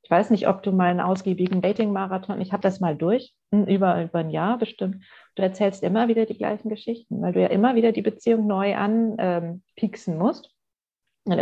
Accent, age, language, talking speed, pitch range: German, 40-59, German, 205 wpm, 195-240 Hz